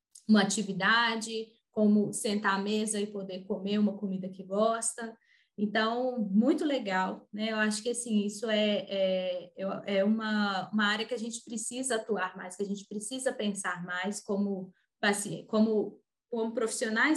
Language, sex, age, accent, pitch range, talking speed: Portuguese, female, 20-39, Brazilian, 205-235 Hz, 155 wpm